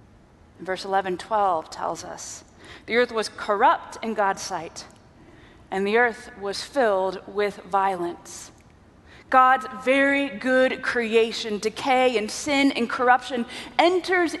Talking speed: 115 wpm